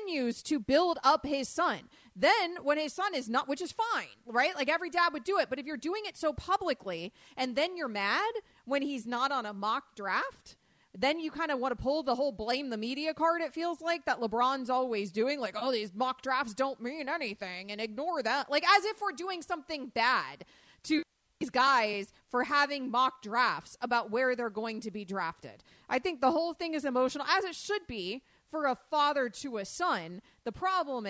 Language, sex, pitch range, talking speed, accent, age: English, female, 220-300 Hz, 225 wpm, American, 30-49